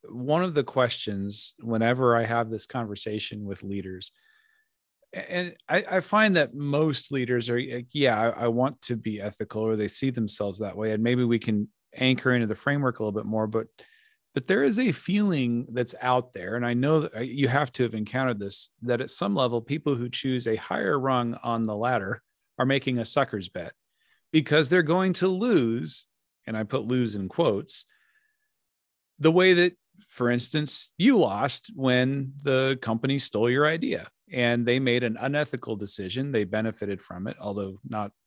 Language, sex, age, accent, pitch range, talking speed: English, male, 40-59, American, 110-150 Hz, 185 wpm